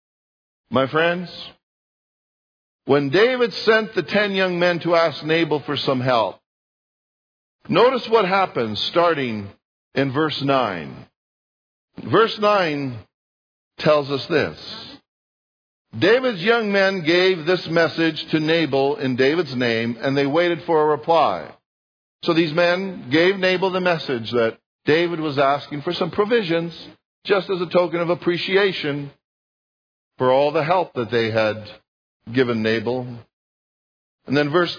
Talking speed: 130 wpm